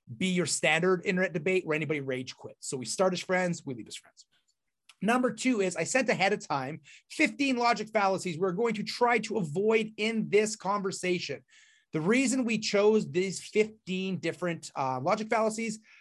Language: English